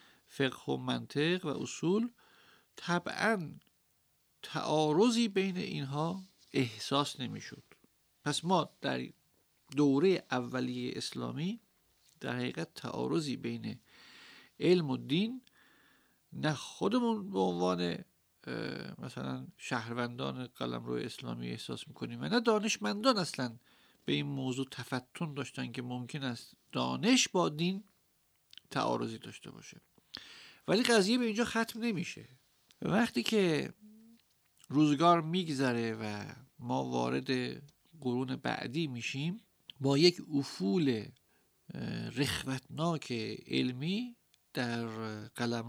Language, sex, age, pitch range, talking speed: Persian, male, 50-69, 115-175 Hz, 100 wpm